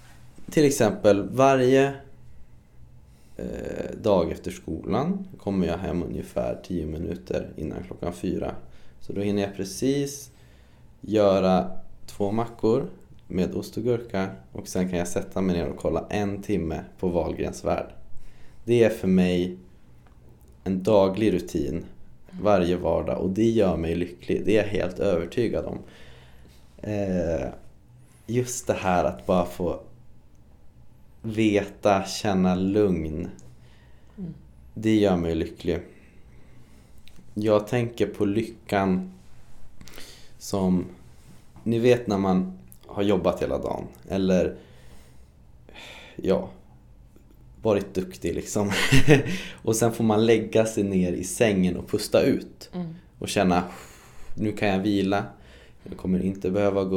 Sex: male